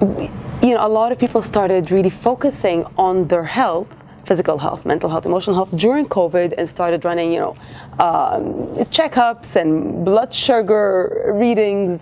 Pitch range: 175-225 Hz